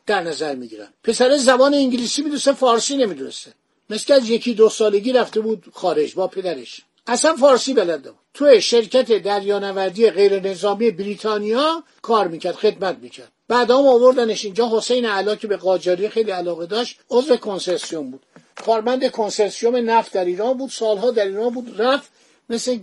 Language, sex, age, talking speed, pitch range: Persian, male, 50-69, 150 wpm, 200-255 Hz